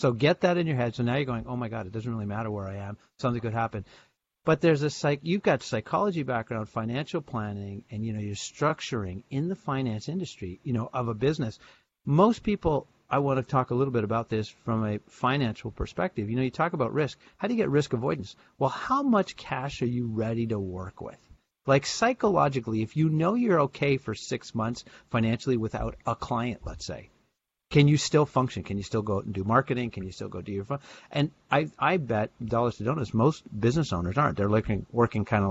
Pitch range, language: 110-140 Hz, English